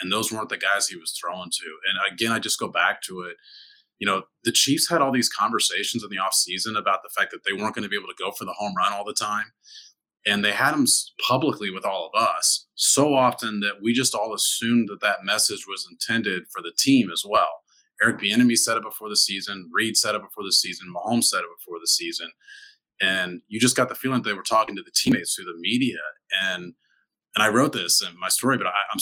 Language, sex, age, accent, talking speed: English, male, 30-49, American, 240 wpm